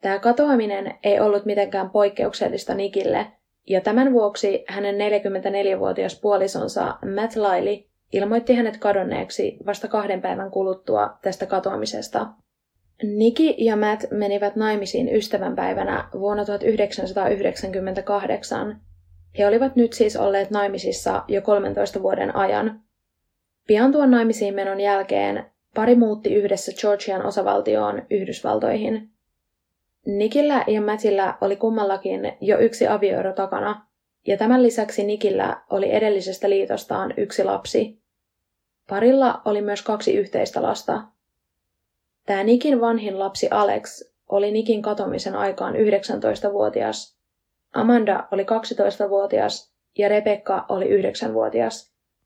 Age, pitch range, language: 20-39, 195-225 Hz, Finnish